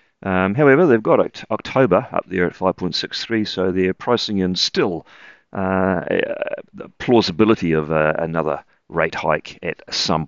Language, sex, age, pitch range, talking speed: English, male, 40-59, 85-100 Hz, 145 wpm